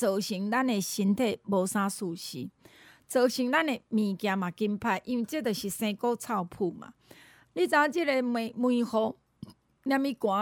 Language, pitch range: Chinese, 205-265 Hz